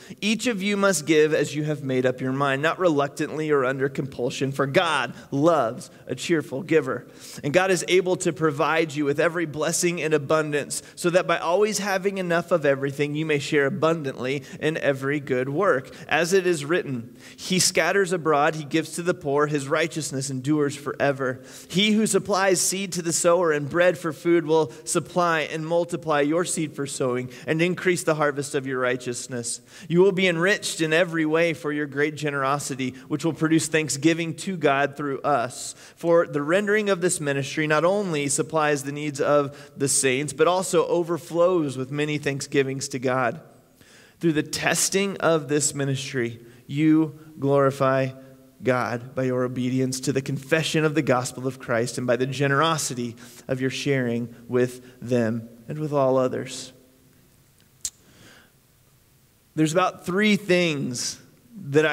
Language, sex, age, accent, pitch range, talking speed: English, male, 30-49, American, 135-170 Hz, 165 wpm